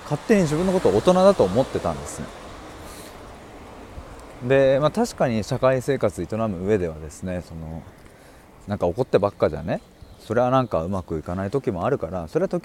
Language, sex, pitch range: Japanese, male, 85-130 Hz